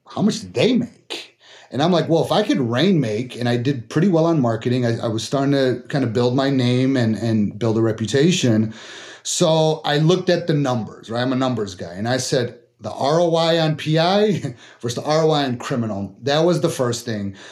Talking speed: 220 wpm